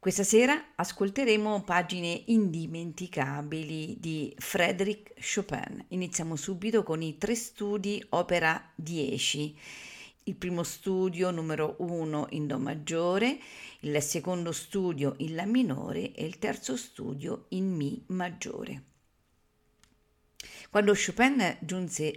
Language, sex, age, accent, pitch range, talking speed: Italian, female, 50-69, native, 150-200 Hz, 110 wpm